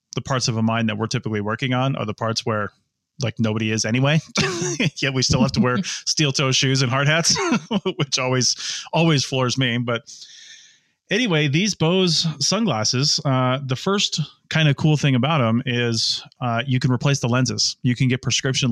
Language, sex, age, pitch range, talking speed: English, male, 30-49, 115-140 Hz, 190 wpm